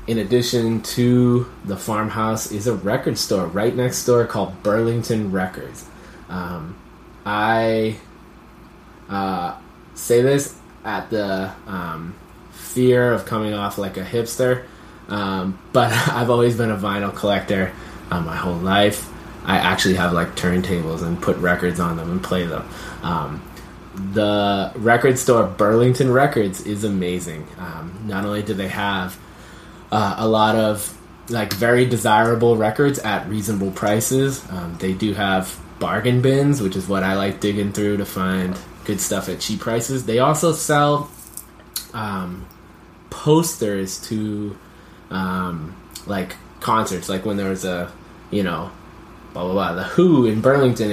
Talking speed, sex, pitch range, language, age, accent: 145 wpm, male, 95-115 Hz, English, 20-39, American